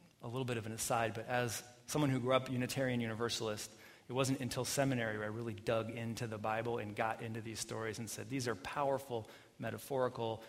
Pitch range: 110-130 Hz